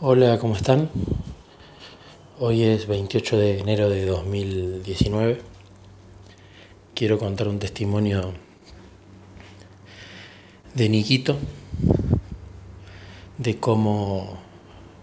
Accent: Argentinian